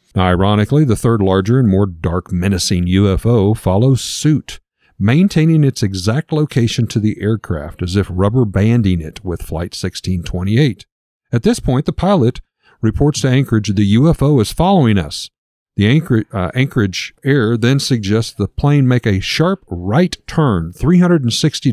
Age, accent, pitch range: 50-69, American, 95-130 Hz